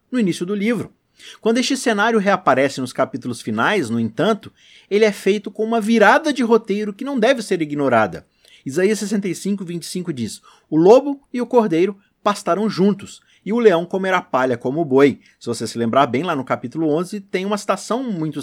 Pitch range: 150-225 Hz